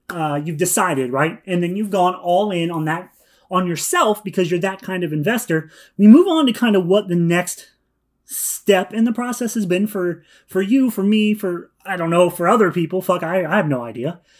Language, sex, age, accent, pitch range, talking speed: English, male, 30-49, American, 170-215 Hz, 220 wpm